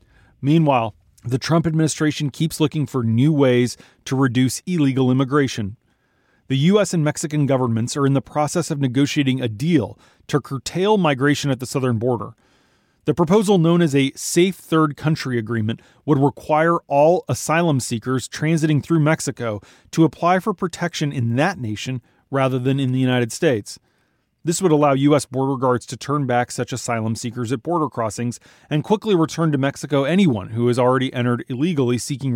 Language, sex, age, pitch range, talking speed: English, male, 30-49, 120-155 Hz, 165 wpm